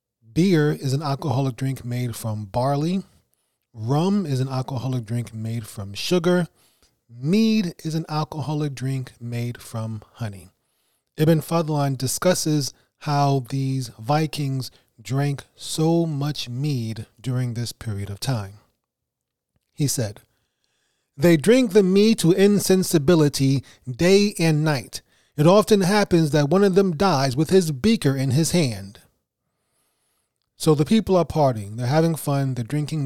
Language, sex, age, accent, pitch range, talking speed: English, male, 30-49, American, 125-165 Hz, 135 wpm